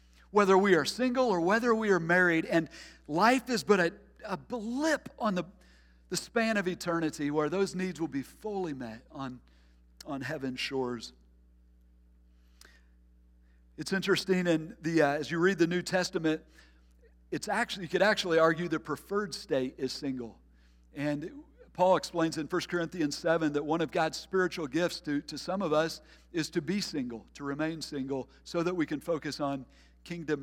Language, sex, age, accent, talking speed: English, male, 50-69, American, 170 wpm